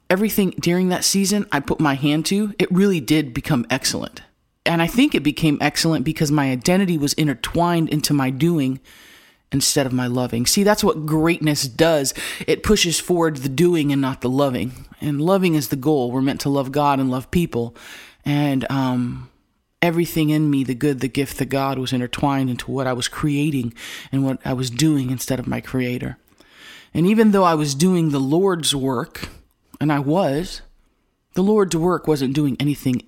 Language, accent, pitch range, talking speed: English, American, 140-180 Hz, 190 wpm